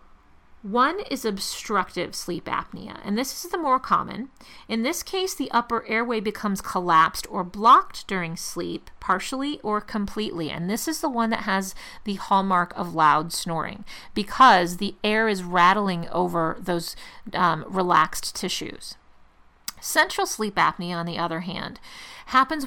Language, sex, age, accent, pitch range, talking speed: English, female, 40-59, American, 180-235 Hz, 150 wpm